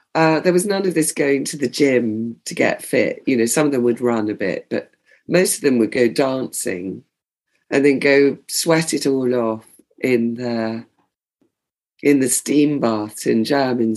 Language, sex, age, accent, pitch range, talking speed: English, female, 40-59, British, 120-155 Hz, 190 wpm